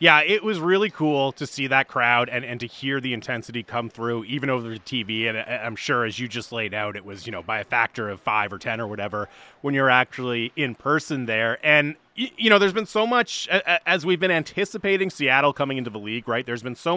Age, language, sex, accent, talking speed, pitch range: 30-49, English, male, American, 240 wpm, 125-175 Hz